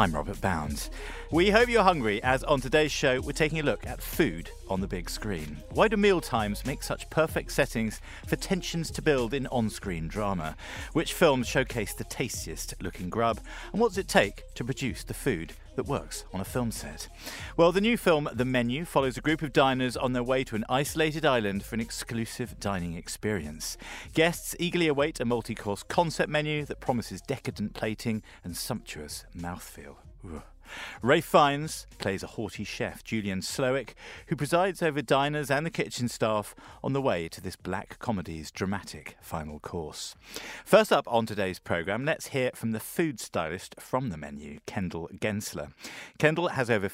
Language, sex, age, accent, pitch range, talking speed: English, male, 40-59, British, 95-145 Hz, 175 wpm